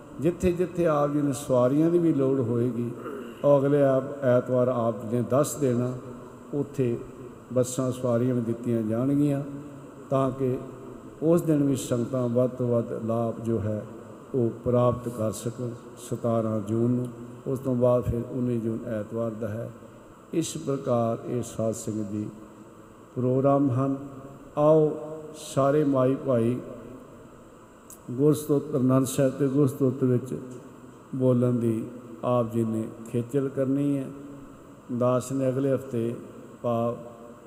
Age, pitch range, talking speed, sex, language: 50-69, 120-140 Hz, 130 wpm, male, Punjabi